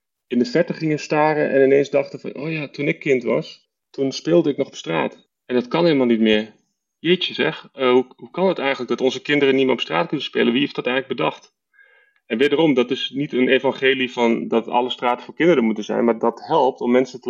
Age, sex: 30-49, male